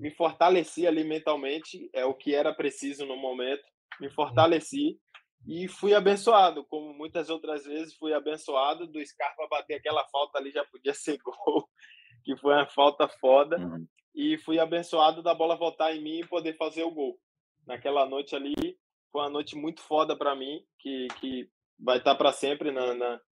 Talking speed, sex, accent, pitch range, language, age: 175 wpm, male, Brazilian, 145-180 Hz, Portuguese, 20-39